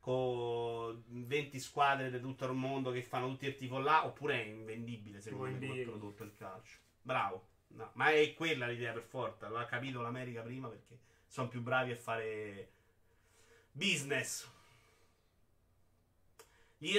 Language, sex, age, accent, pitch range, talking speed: Italian, male, 30-49, native, 110-155 Hz, 145 wpm